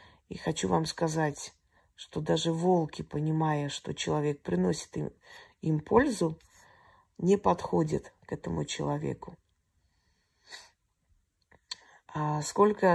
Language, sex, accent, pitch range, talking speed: Russian, female, native, 150-175 Hz, 90 wpm